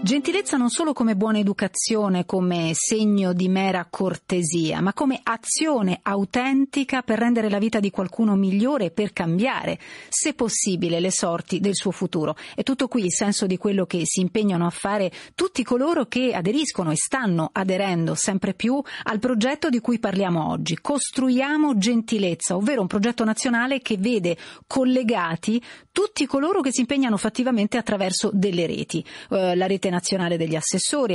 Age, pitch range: 40-59, 190-255 Hz